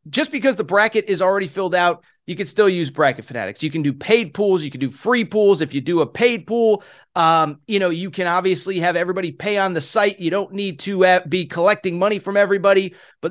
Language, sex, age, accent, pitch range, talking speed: English, male, 30-49, American, 170-230 Hz, 235 wpm